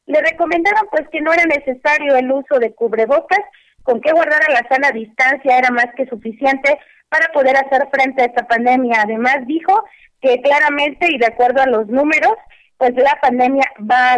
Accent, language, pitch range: Mexican, Spanish, 235-285 Hz